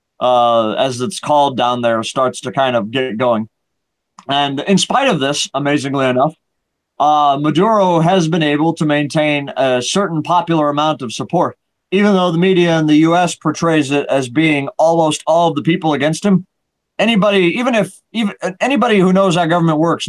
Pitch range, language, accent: 130-165 Hz, English, American